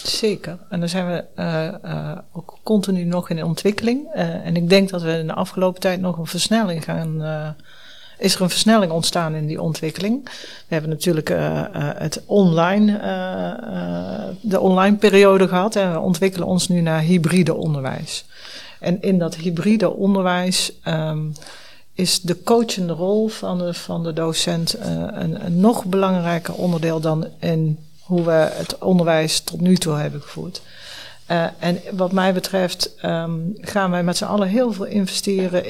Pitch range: 165-195 Hz